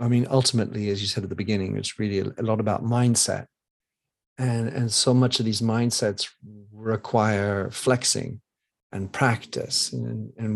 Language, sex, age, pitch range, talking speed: English, male, 40-59, 110-130 Hz, 160 wpm